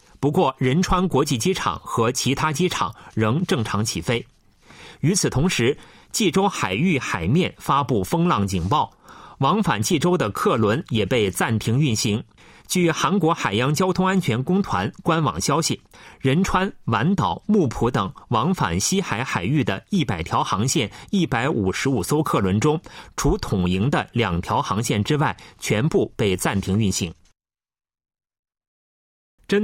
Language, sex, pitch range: Chinese, male, 110-170 Hz